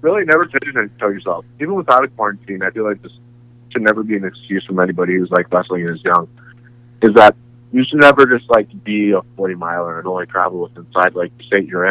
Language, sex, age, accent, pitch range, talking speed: English, male, 30-49, American, 95-120 Hz, 220 wpm